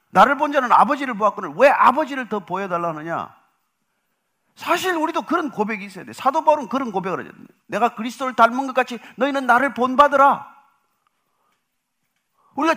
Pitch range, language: 215-280 Hz, Korean